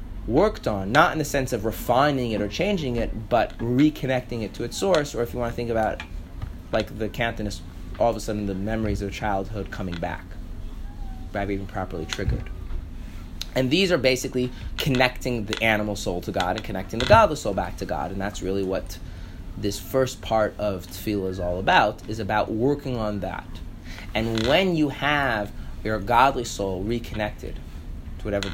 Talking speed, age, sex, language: 185 wpm, 20-39, male, English